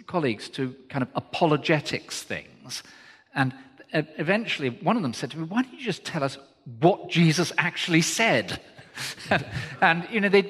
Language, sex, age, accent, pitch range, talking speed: English, male, 40-59, British, 125-175 Hz, 165 wpm